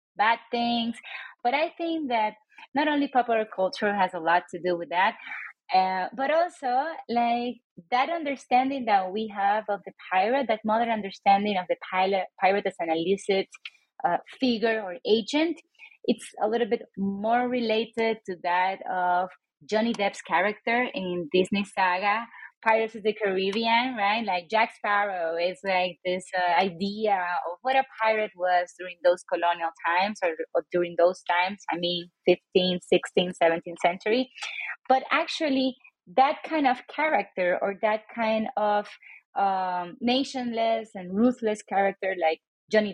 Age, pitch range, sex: 20-39, 185-245 Hz, female